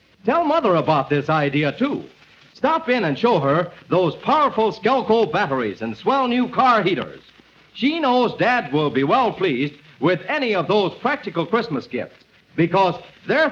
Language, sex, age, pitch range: English, male, 50-69, 155-245 Hz